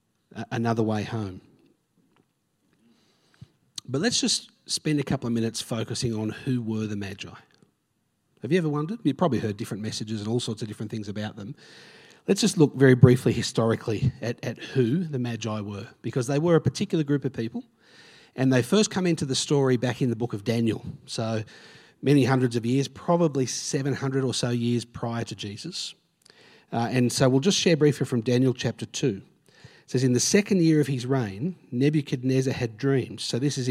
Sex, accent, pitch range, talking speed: male, Australian, 115-140 Hz, 190 wpm